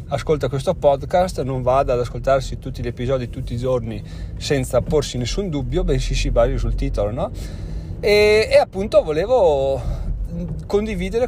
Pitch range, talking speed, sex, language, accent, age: 125-155 Hz, 150 wpm, male, Italian, native, 30-49